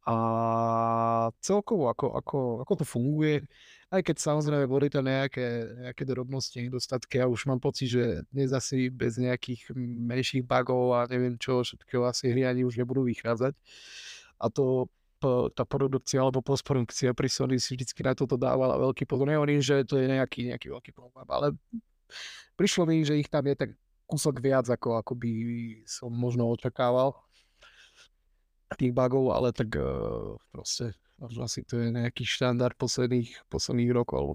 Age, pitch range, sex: 30-49, 115-135 Hz, male